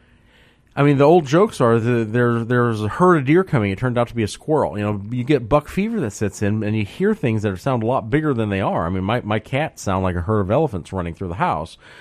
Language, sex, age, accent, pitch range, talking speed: English, male, 40-59, American, 115-175 Hz, 285 wpm